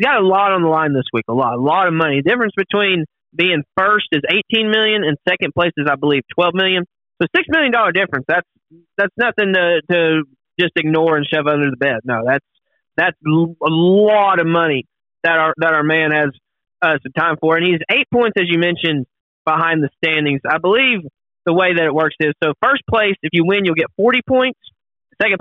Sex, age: male, 30-49